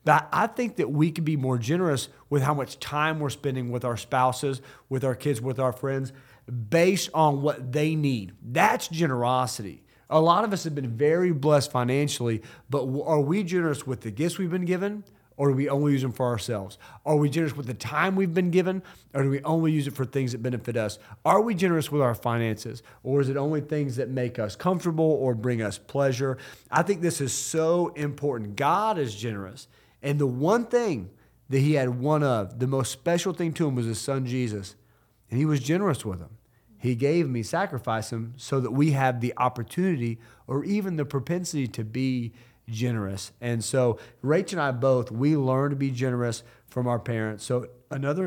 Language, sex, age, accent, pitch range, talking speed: English, male, 40-59, American, 120-150 Hz, 205 wpm